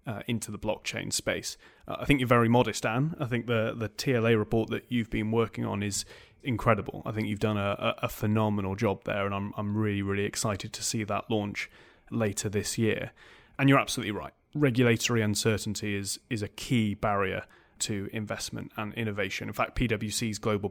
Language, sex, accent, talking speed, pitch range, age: English, male, British, 190 wpm, 105-125 Hz, 30-49